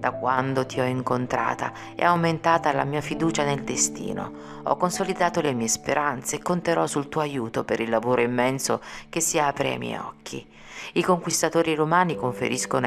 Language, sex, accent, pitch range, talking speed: Italian, female, native, 125-160 Hz, 170 wpm